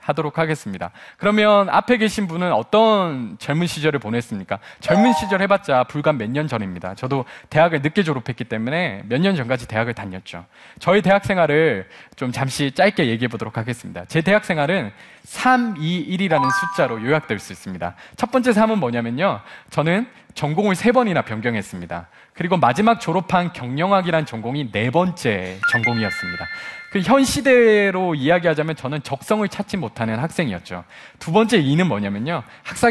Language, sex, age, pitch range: Korean, male, 20-39, 125-200 Hz